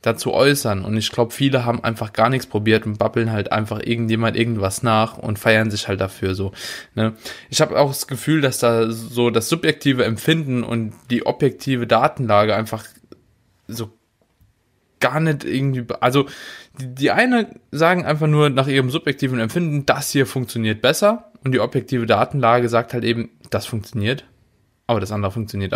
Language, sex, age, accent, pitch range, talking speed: German, male, 20-39, German, 115-145 Hz, 170 wpm